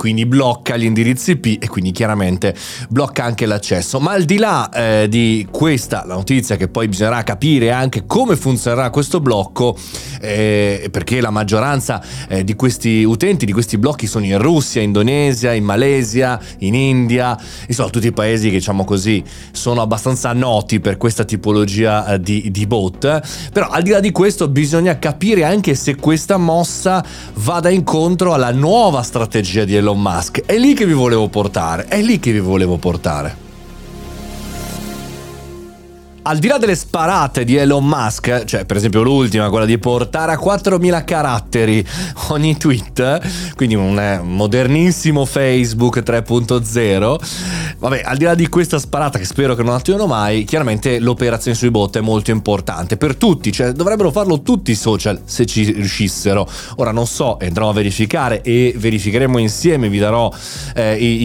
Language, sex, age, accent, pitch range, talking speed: Italian, male, 30-49, native, 105-145 Hz, 160 wpm